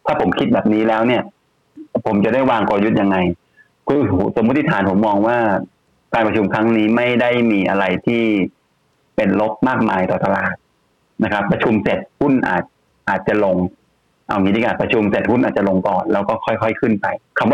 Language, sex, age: Thai, male, 30-49